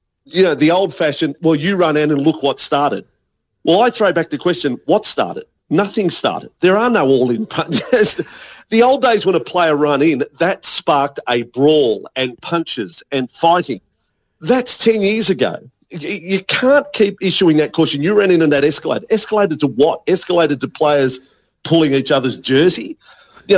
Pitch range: 140-195 Hz